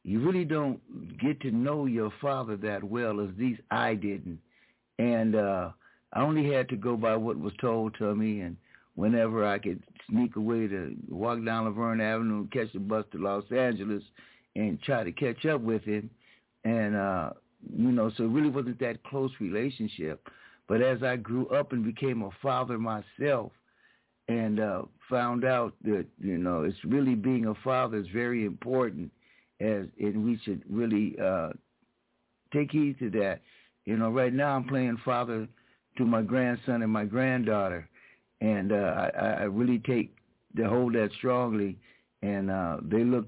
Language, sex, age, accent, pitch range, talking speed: English, male, 60-79, American, 105-130 Hz, 170 wpm